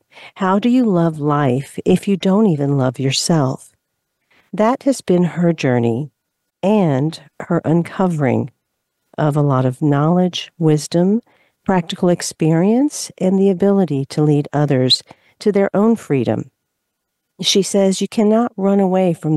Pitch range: 140-190 Hz